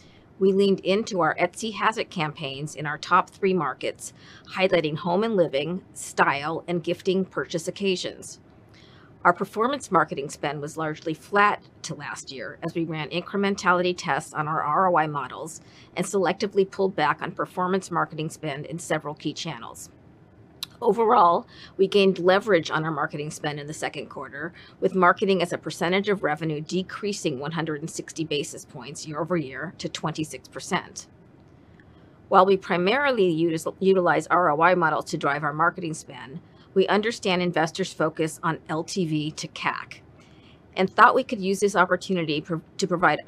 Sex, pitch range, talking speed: female, 155-190 Hz, 150 wpm